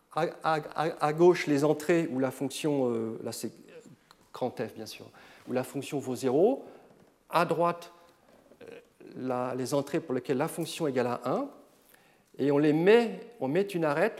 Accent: French